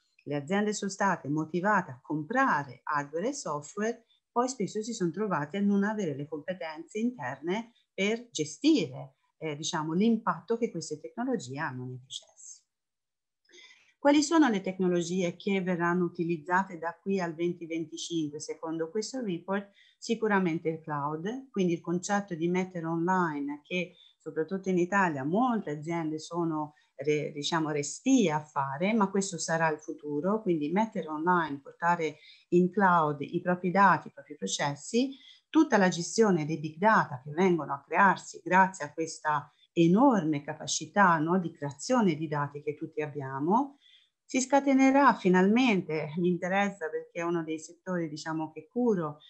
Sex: female